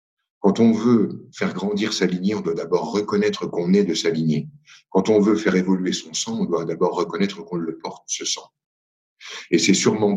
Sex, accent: male, French